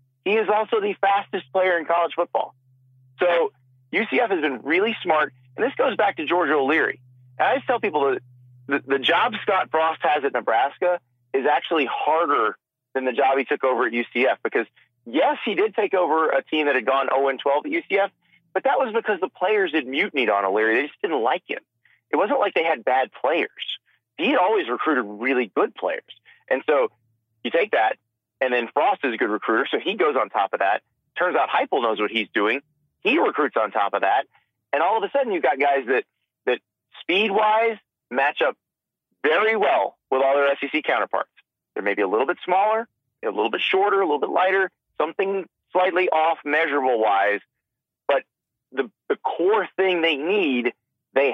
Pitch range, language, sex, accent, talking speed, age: 130-200 Hz, English, male, American, 195 wpm, 30-49